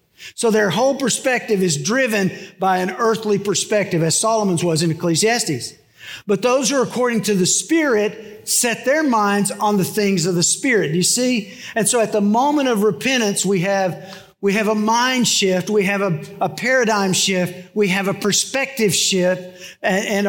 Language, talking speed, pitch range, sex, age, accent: English, 185 wpm, 185-225 Hz, male, 50-69, American